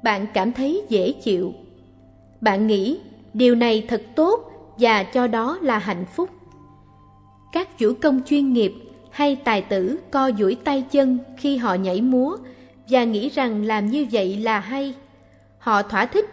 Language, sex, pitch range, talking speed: Vietnamese, female, 195-275 Hz, 160 wpm